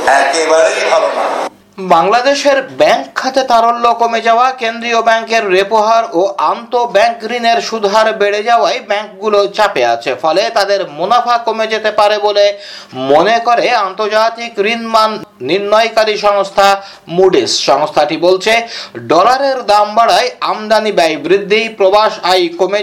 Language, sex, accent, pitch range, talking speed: Bengali, male, native, 195-225 Hz, 125 wpm